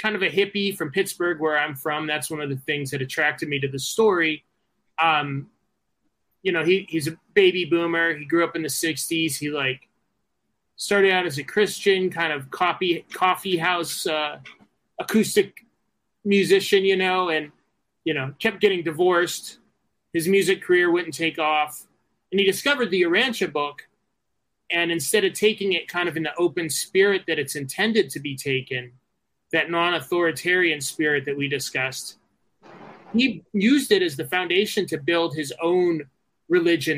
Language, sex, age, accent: English, male, 30-49, American